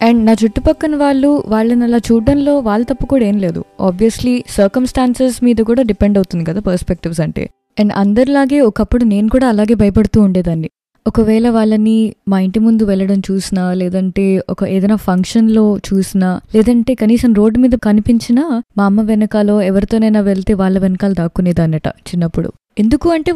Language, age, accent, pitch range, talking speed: Telugu, 20-39, native, 200-260 Hz, 150 wpm